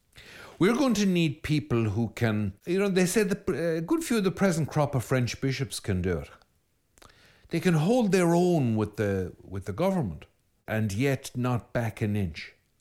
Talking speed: 195 wpm